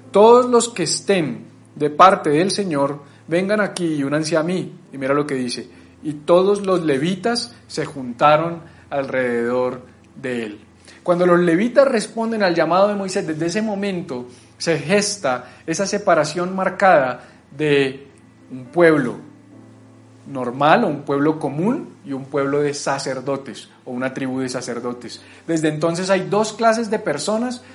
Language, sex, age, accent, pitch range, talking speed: Spanish, male, 40-59, Colombian, 130-195 Hz, 150 wpm